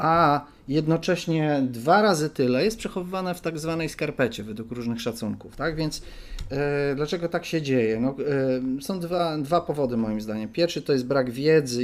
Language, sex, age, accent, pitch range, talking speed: Polish, male, 40-59, native, 120-145 Hz, 155 wpm